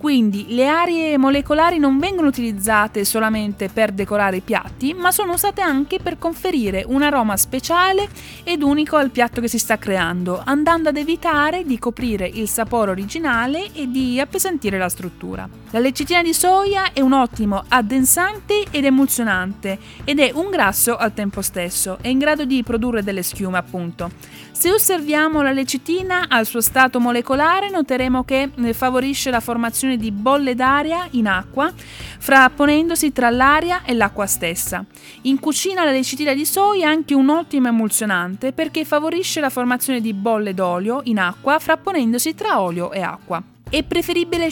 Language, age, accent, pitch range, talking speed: Italian, 20-39, native, 210-305 Hz, 160 wpm